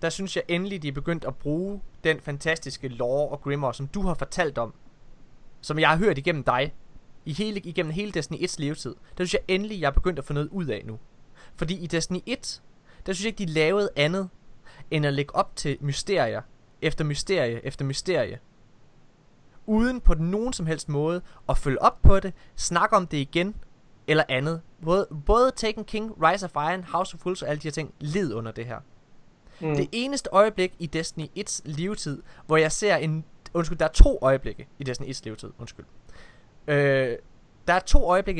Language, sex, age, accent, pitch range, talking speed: Danish, male, 20-39, native, 135-180 Hz, 195 wpm